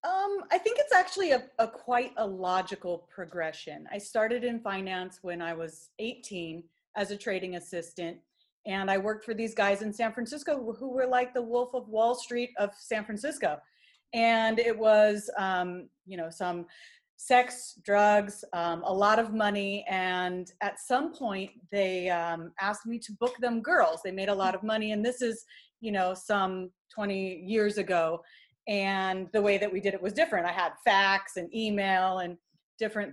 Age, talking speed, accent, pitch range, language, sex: 30-49, 180 wpm, American, 185-240 Hz, English, female